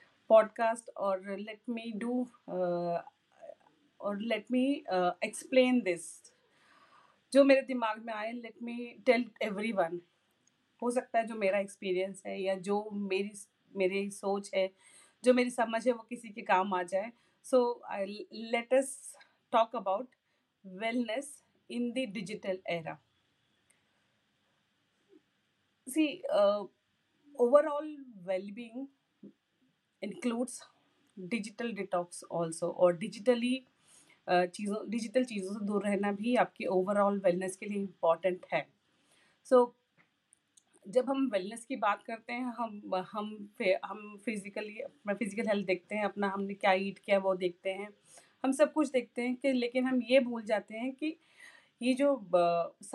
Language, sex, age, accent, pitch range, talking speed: English, female, 40-59, Indian, 195-250 Hz, 115 wpm